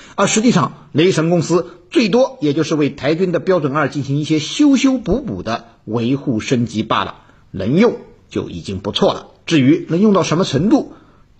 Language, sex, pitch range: Chinese, male, 130-215 Hz